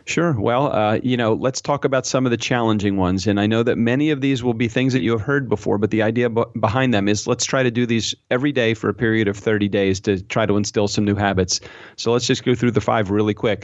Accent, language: American, English